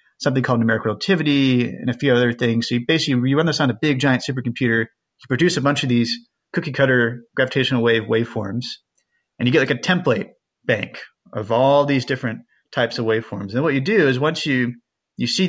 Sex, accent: male, American